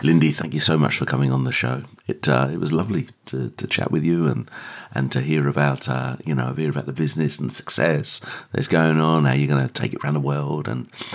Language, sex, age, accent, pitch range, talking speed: English, male, 40-59, British, 65-75 Hz, 255 wpm